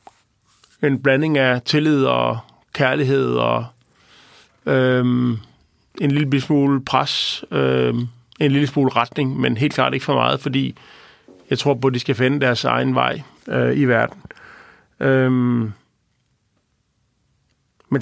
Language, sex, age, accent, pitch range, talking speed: Danish, male, 40-59, native, 120-145 Hz, 130 wpm